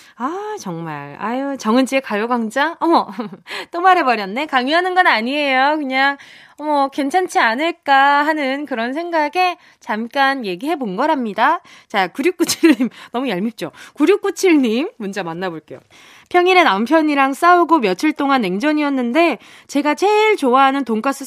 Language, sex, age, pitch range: Korean, female, 20-39, 235-325 Hz